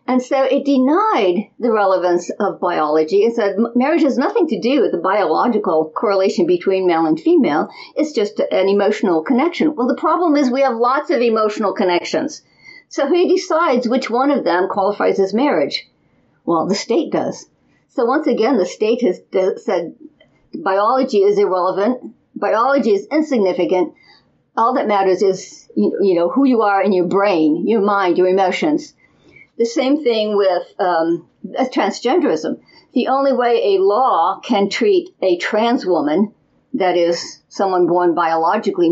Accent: American